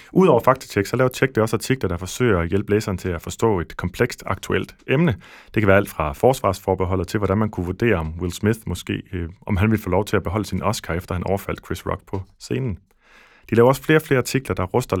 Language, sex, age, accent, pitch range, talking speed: Danish, male, 30-49, native, 90-110 Hz, 245 wpm